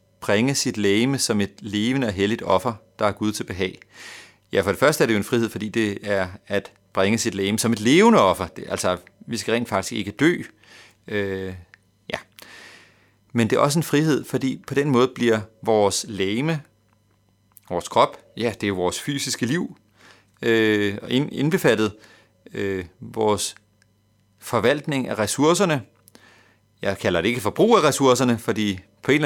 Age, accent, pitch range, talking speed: 30-49, native, 100-120 Hz, 170 wpm